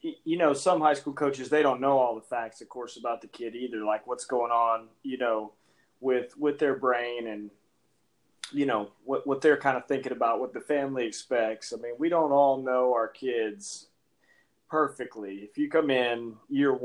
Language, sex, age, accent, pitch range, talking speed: English, male, 30-49, American, 120-150 Hz, 200 wpm